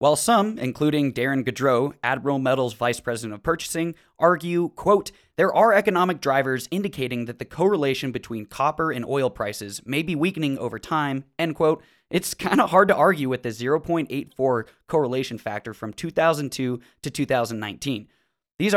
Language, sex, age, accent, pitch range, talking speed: English, male, 20-39, American, 120-160 Hz, 155 wpm